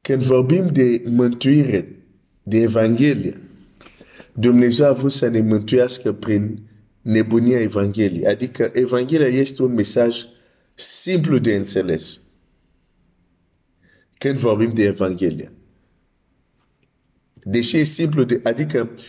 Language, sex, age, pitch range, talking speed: Romanian, male, 50-69, 110-140 Hz, 55 wpm